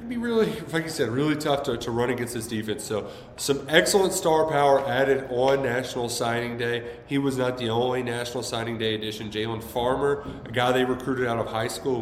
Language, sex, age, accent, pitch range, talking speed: English, male, 30-49, American, 115-145 Hz, 210 wpm